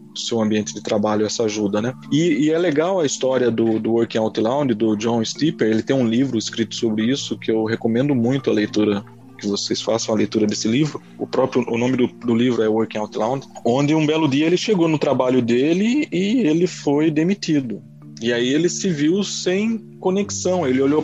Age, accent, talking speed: 20-39, Brazilian, 210 wpm